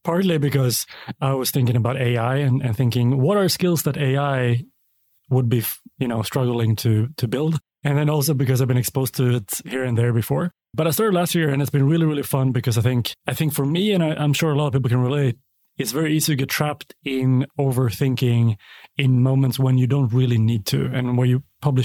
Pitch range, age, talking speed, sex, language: 130-155 Hz, 30-49, 230 wpm, male, English